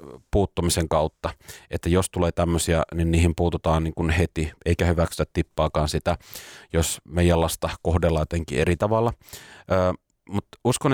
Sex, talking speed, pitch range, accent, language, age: male, 130 wpm, 85-105 Hz, native, Finnish, 30-49